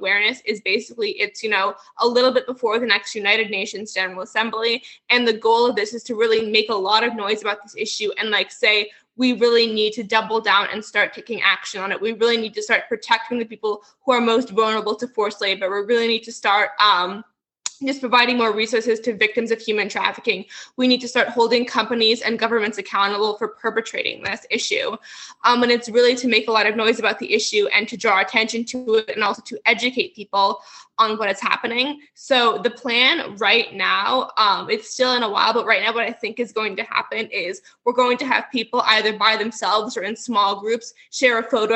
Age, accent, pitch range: 20-39, American, 210-240 Hz